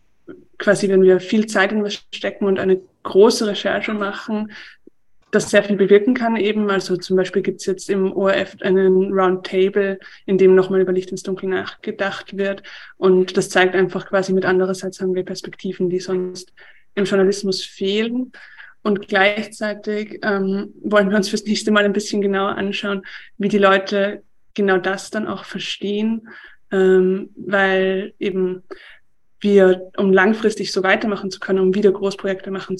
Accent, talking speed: German, 160 wpm